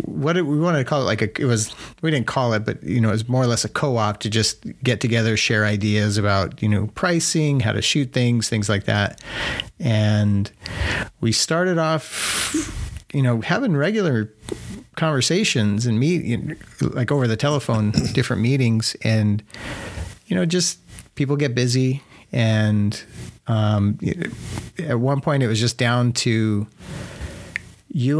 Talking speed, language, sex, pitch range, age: 160 wpm, English, male, 110-135 Hz, 40-59